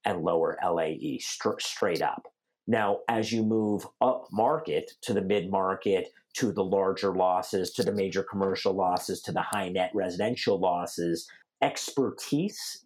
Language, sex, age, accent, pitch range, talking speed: English, male, 50-69, American, 95-125 Hz, 140 wpm